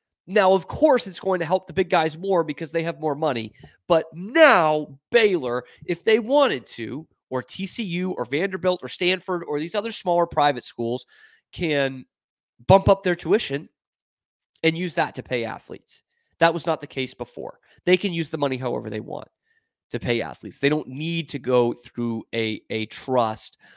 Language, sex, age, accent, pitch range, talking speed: English, male, 30-49, American, 125-175 Hz, 180 wpm